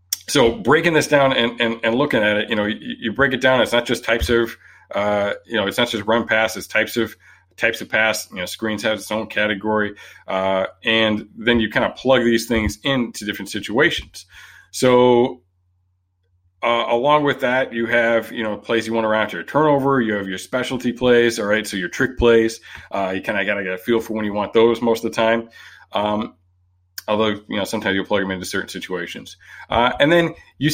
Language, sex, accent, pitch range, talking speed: English, male, American, 105-130 Hz, 225 wpm